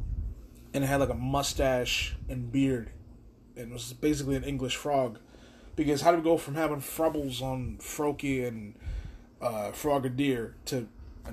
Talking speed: 160 wpm